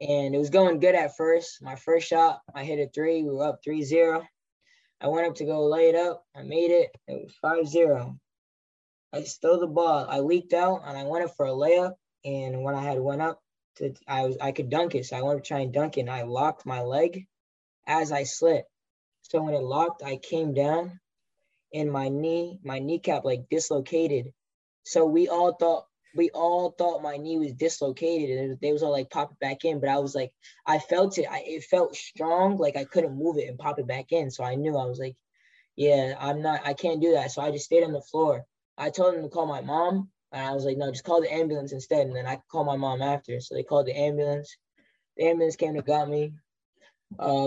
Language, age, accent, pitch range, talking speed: English, 10-29, American, 135-165 Hz, 235 wpm